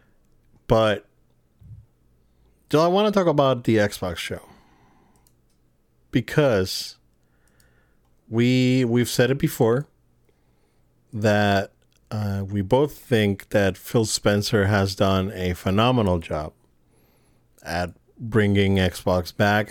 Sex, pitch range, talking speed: male, 90-115 Hz, 100 wpm